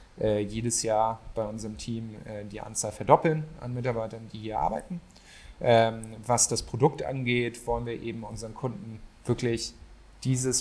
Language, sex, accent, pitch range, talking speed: German, male, German, 110-130 Hz, 155 wpm